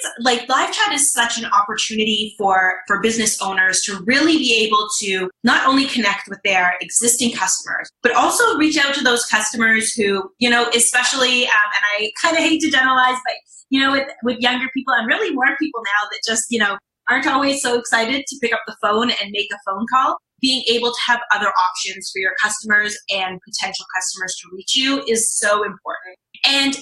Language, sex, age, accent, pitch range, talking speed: English, female, 20-39, American, 210-265 Hz, 205 wpm